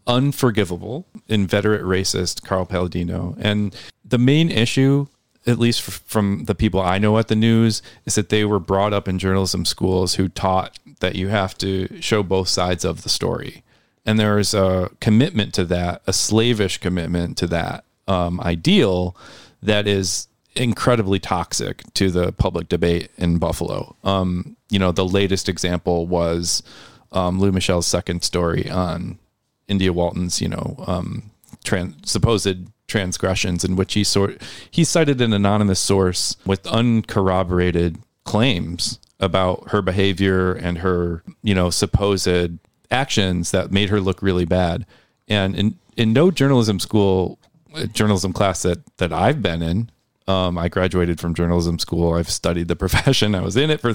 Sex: male